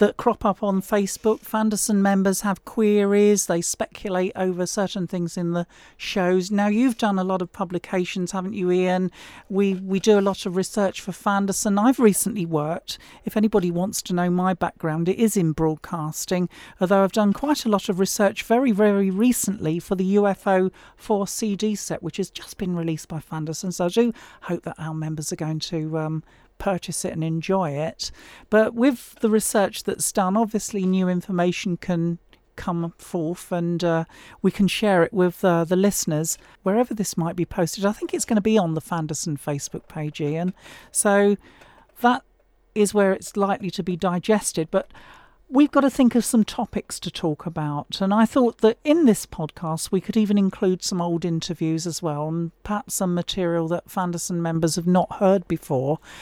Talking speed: 190 wpm